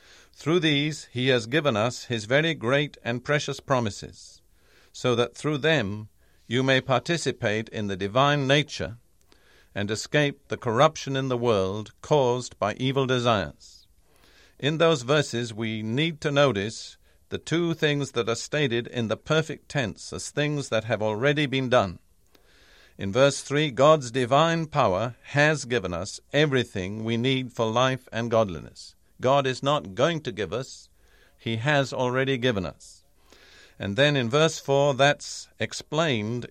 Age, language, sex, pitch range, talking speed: 50-69, English, male, 110-145 Hz, 155 wpm